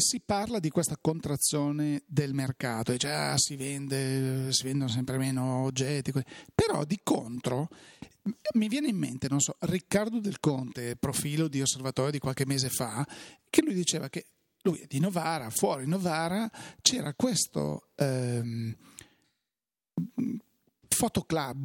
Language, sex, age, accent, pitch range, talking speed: Italian, male, 40-59, native, 135-175 Hz, 135 wpm